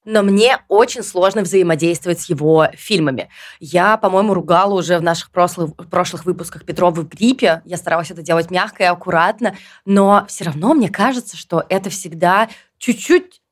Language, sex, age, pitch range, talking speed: Russian, female, 20-39, 170-215 Hz, 150 wpm